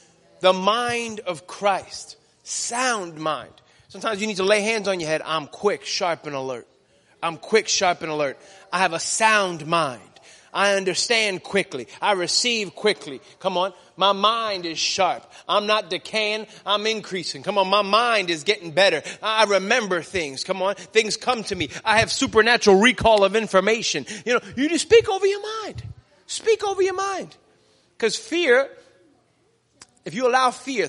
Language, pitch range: English, 190-275 Hz